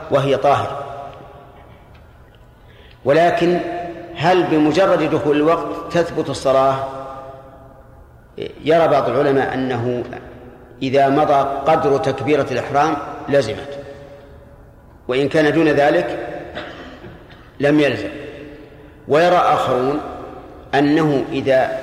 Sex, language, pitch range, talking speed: male, Arabic, 130-150 Hz, 80 wpm